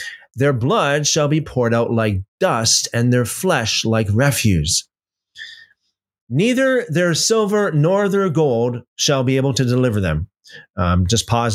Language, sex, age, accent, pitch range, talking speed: English, male, 30-49, American, 105-150 Hz, 145 wpm